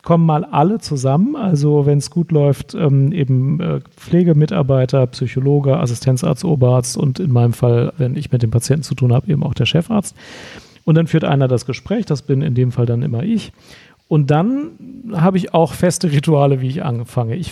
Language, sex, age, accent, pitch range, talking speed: German, male, 40-59, German, 135-165 Hz, 195 wpm